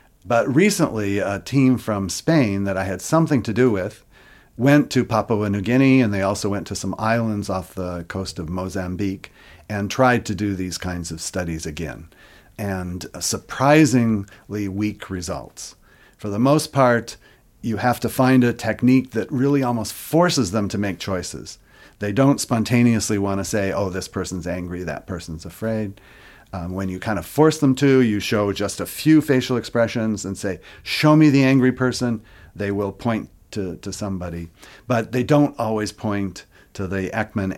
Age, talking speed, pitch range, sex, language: 50-69, 175 wpm, 95-125 Hz, male, English